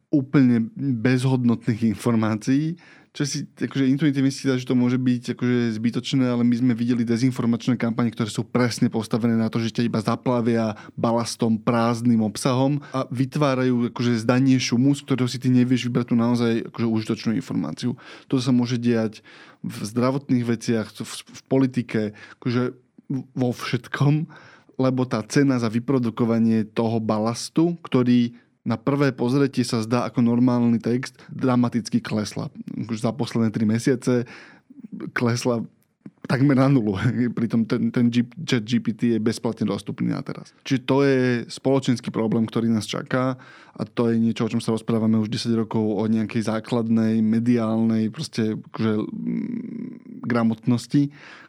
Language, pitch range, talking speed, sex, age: Slovak, 115-130 Hz, 145 wpm, male, 20-39